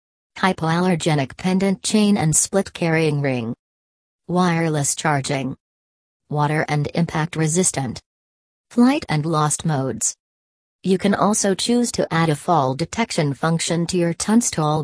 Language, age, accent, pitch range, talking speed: English, 40-59, American, 145-180 Hz, 120 wpm